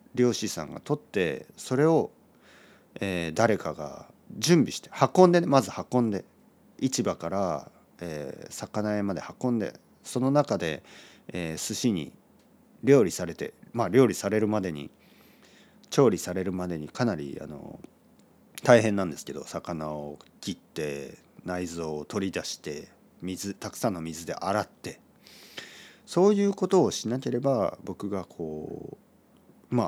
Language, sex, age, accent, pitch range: Japanese, male, 40-59, native, 90-145 Hz